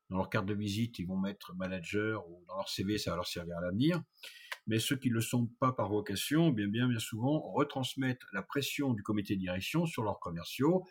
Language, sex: French, male